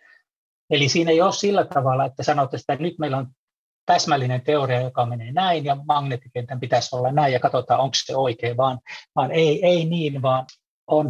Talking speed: 185 wpm